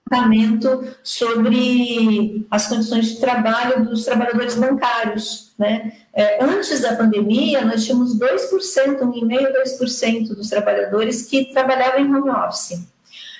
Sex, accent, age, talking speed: female, Brazilian, 50-69, 110 wpm